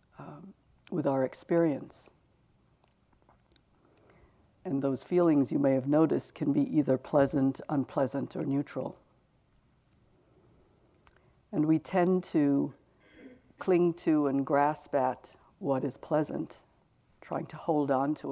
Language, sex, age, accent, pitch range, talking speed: English, female, 60-79, American, 135-160 Hz, 115 wpm